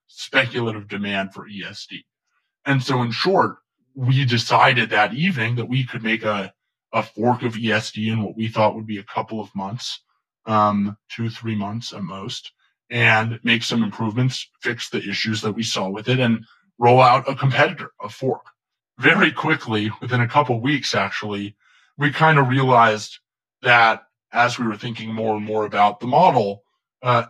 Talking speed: 175 wpm